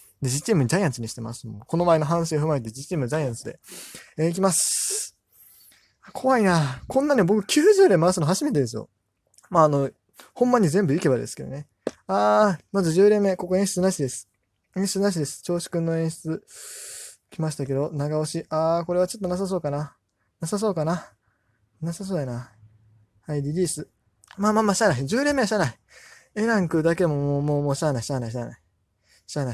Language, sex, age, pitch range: Japanese, male, 20-39, 130-195 Hz